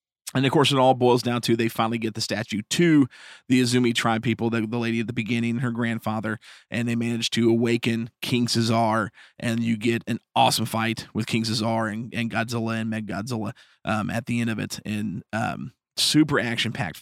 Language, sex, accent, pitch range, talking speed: English, male, American, 115-125 Hz, 205 wpm